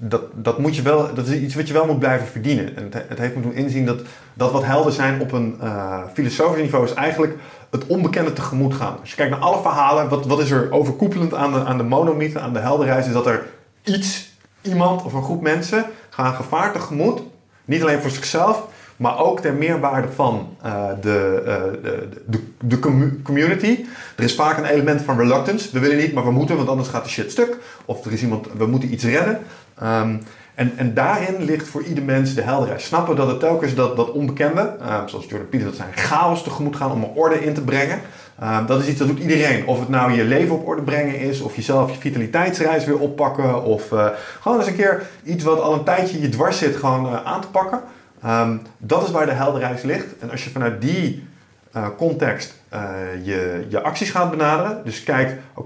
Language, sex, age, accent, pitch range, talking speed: Dutch, male, 30-49, Dutch, 120-155 Hz, 225 wpm